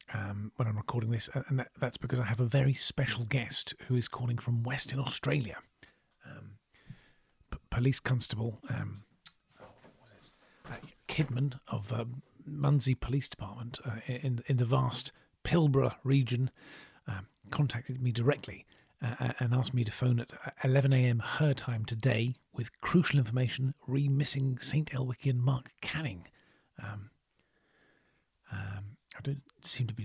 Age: 50-69